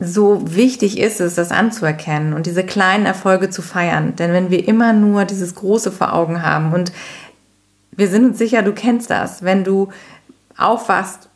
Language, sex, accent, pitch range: German, female, German, 175-205 Hz